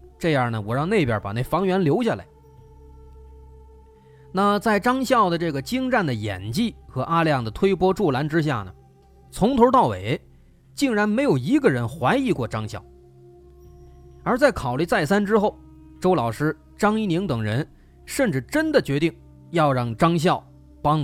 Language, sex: Chinese, male